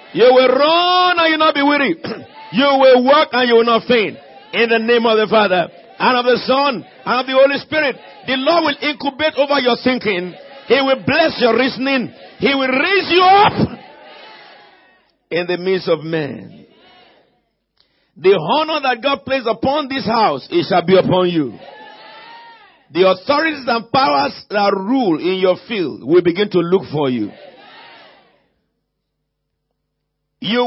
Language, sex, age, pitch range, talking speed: English, male, 50-69, 180-270 Hz, 160 wpm